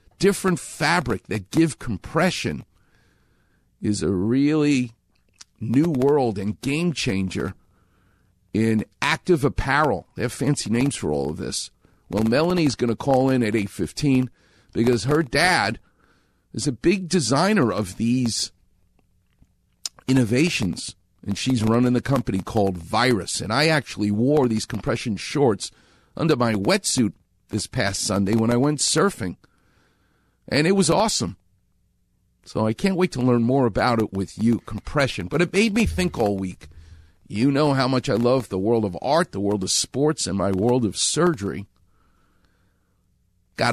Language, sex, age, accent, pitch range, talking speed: English, male, 50-69, American, 100-150 Hz, 150 wpm